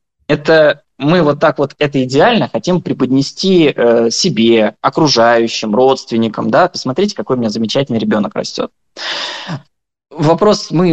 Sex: male